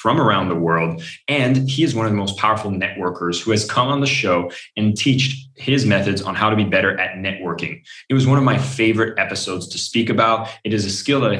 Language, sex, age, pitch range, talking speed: English, male, 20-39, 95-120 Hz, 240 wpm